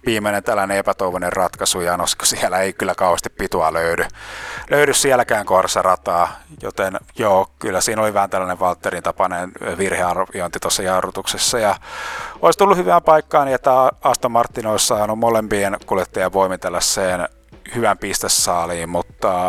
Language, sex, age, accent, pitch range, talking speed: Finnish, male, 30-49, native, 95-120 Hz, 135 wpm